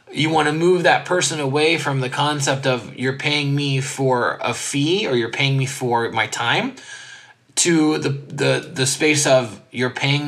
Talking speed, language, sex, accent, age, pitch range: 185 wpm, English, male, American, 20-39, 105-140 Hz